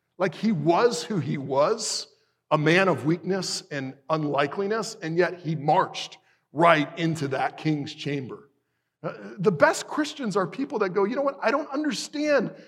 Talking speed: 160 wpm